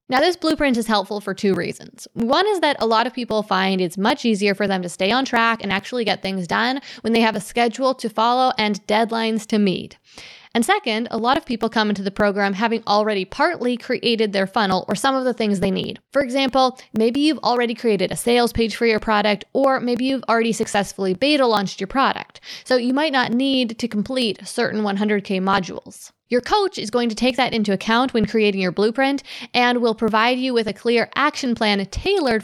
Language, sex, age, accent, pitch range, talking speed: English, female, 20-39, American, 205-255 Hz, 215 wpm